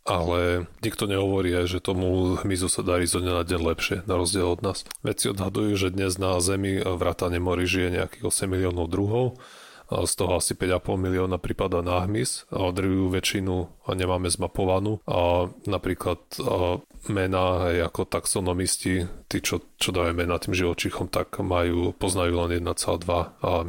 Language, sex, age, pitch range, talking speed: Slovak, male, 30-49, 90-95 Hz, 145 wpm